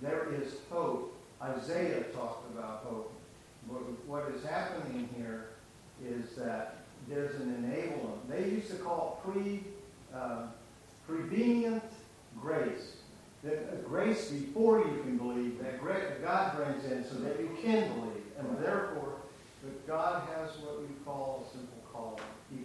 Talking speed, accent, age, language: 130 wpm, American, 50-69, English